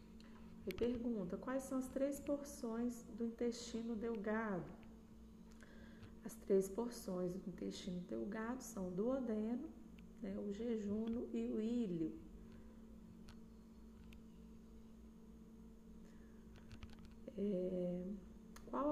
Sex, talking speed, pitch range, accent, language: female, 80 wpm, 200-230 Hz, Brazilian, Portuguese